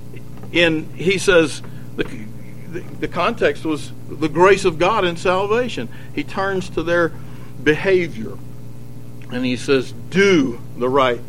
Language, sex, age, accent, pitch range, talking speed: English, male, 60-79, American, 130-210 Hz, 135 wpm